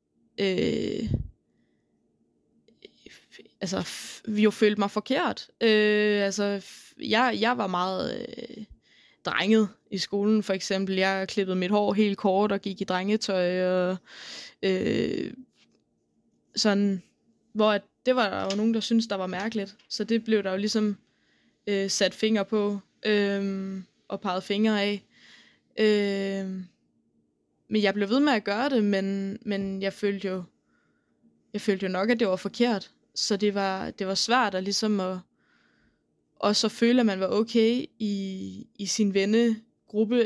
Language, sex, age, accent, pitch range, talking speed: Danish, female, 20-39, native, 190-220 Hz, 155 wpm